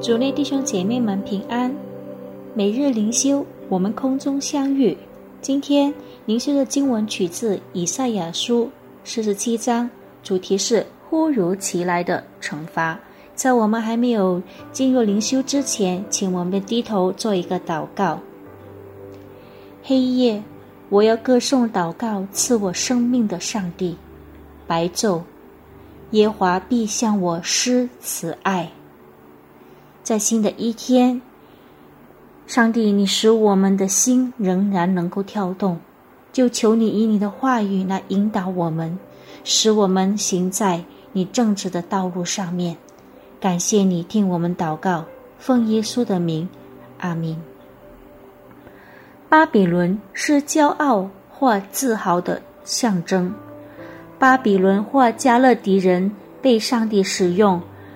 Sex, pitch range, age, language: female, 180-240 Hz, 30-49, Indonesian